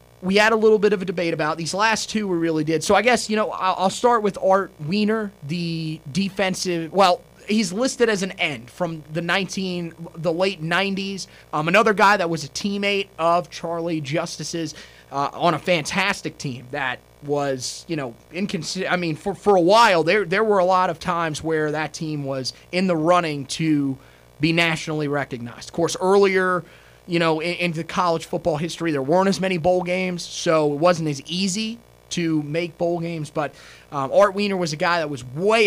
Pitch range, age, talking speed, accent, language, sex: 150-190 Hz, 30-49, 200 wpm, American, English, male